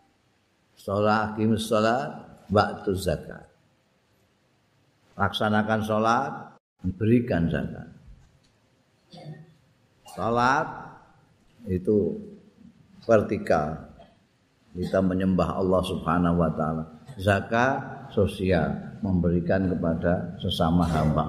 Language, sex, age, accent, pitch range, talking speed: Indonesian, male, 50-69, native, 95-130 Hz, 70 wpm